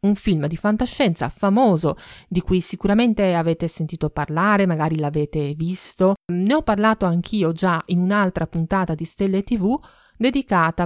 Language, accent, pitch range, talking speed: Italian, native, 160-210 Hz, 145 wpm